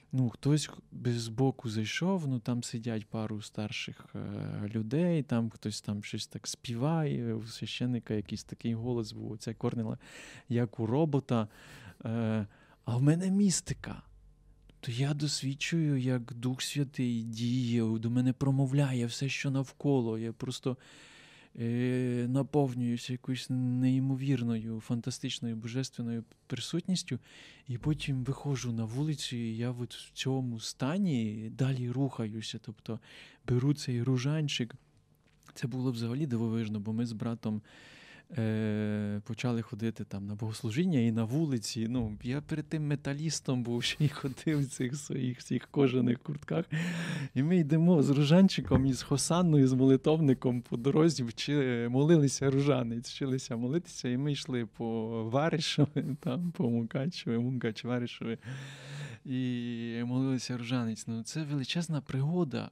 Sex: male